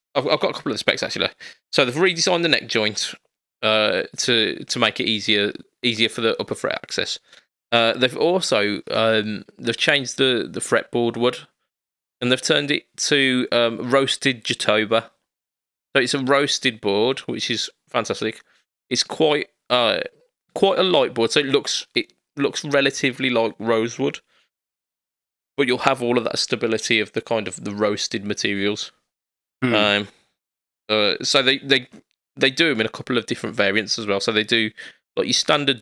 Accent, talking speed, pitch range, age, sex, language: British, 175 wpm, 105-130 Hz, 20-39, male, English